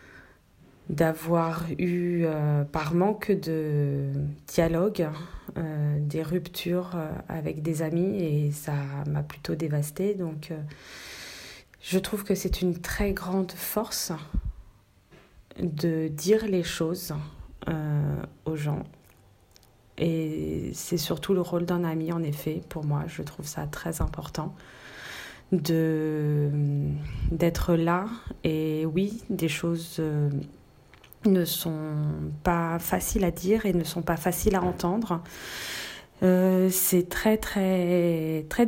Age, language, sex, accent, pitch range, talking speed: 20-39, French, female, French, 155-180 Hz, 120 wpm